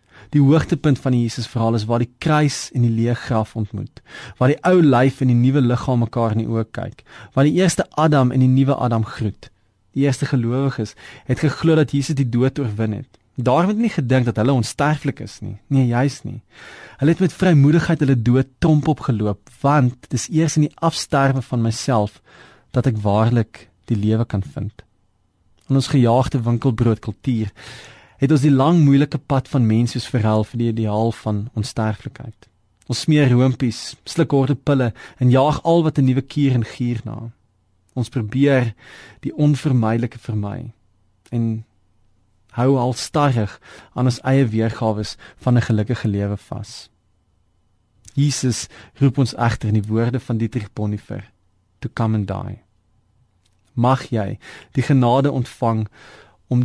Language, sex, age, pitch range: Dutch, male, 30-49, 110-135 Hz